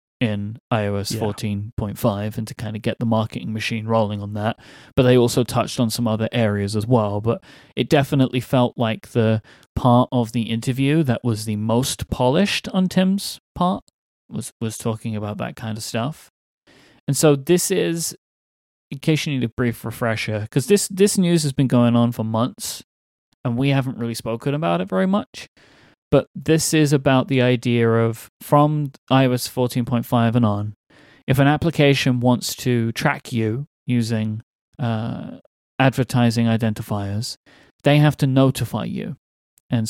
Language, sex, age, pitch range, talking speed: English, male, 30-49, 110-140 Hz, 160 wpm